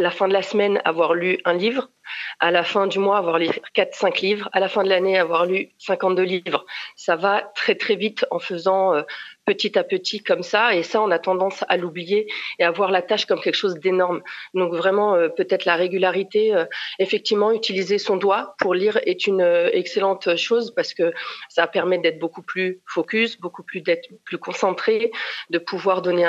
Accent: French